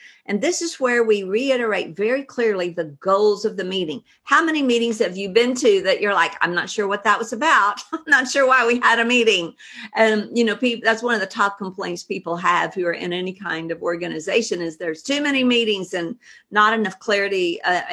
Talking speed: 220 wpm